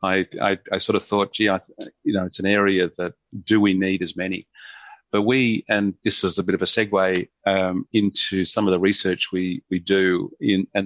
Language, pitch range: English, 90-100 Hz